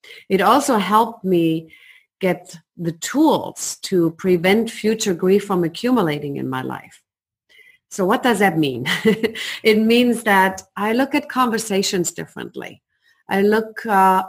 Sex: female